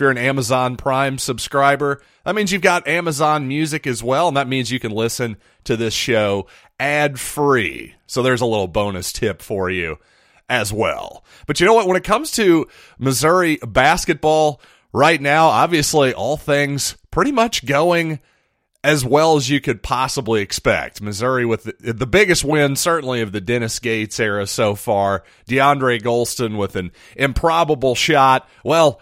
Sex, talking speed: male, 165 wpm